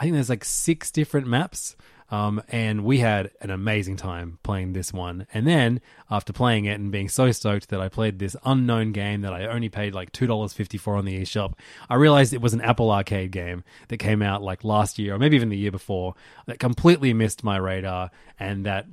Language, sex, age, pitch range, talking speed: English, male, 20-39, 100-120 Hz, 215 wpm